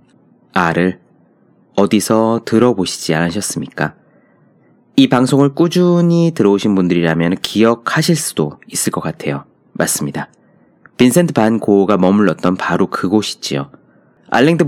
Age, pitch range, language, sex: 30-49, 95-135 Hz, Korean, male